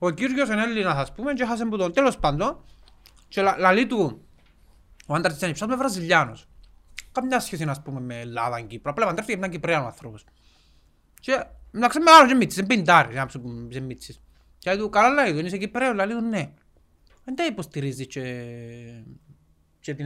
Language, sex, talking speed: Greek, male, 65 wpm